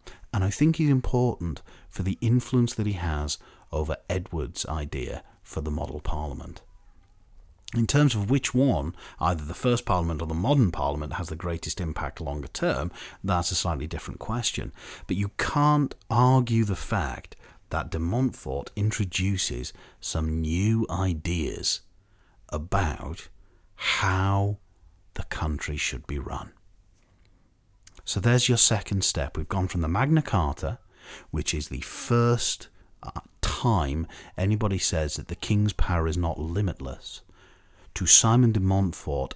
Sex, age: male, 40-59